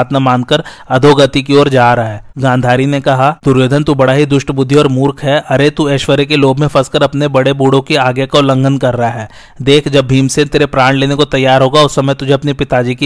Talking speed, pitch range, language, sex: 165 wpm, 130-145 Hz, Hindi, male